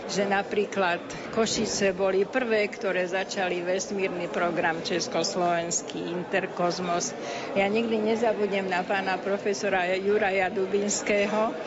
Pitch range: 195-220 Hz